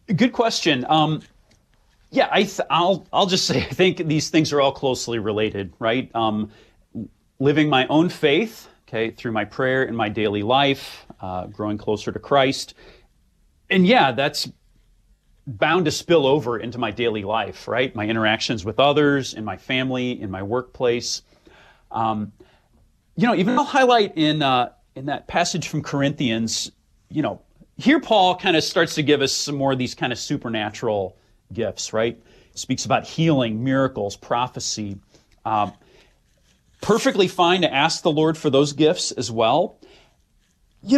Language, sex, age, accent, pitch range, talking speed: English, male, 40-59, American, 115-160 Hz, 160 wpm